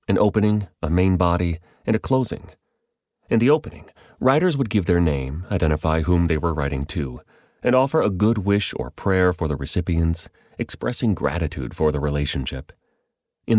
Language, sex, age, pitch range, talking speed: English, male, 30-49, 80-105 Hz, 170 wpm